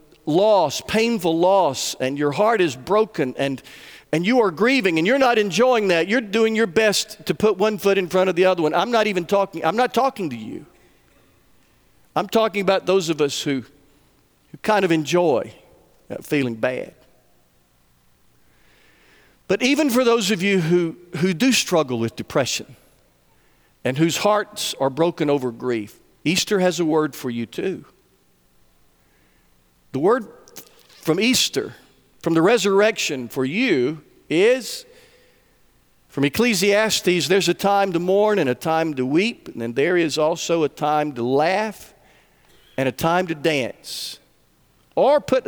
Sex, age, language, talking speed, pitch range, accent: male, 50-69, English, 155 wpm, 135-210 Hz, American